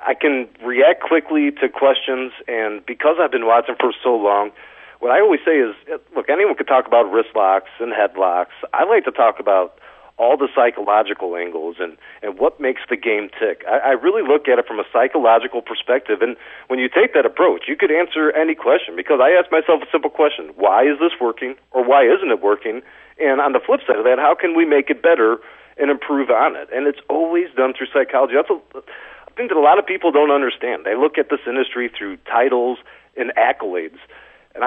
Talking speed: 215 wpm